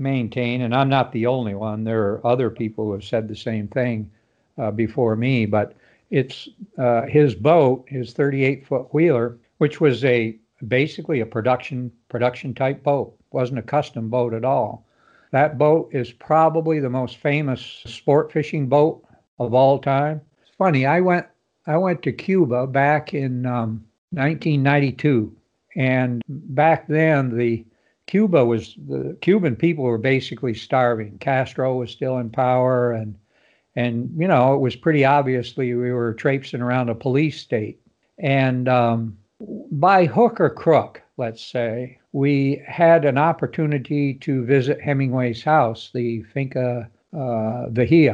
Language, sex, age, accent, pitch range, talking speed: English, male, 60-79, American, 120-150 Hz, 150 wpm